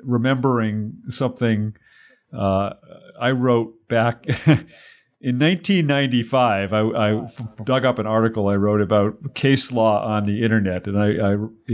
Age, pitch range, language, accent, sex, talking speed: 50-69, 100-120 Hz, English, American, male, 130 wpm